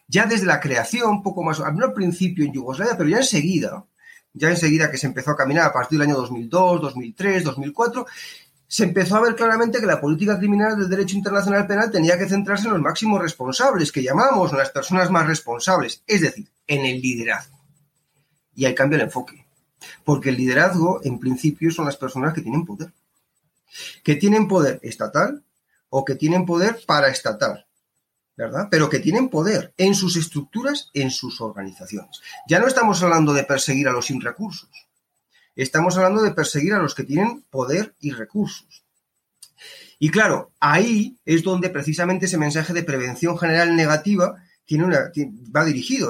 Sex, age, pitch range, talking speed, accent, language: male, 30-49, 145-195 Hz, 170 wpm, Spanish, Spanish